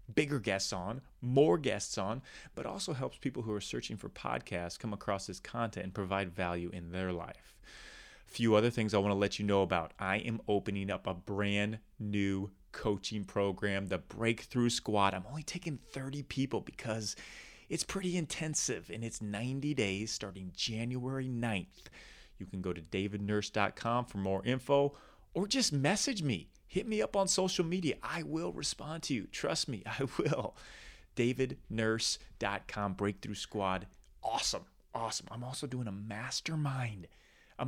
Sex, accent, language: male, American, English